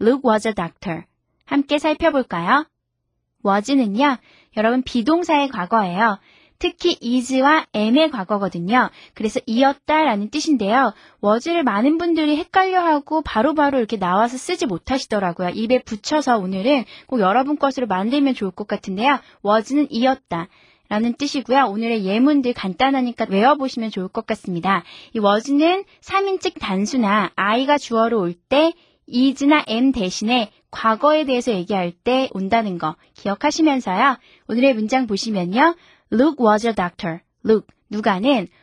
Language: Korean